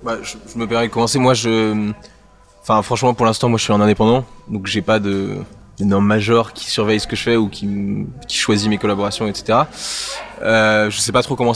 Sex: male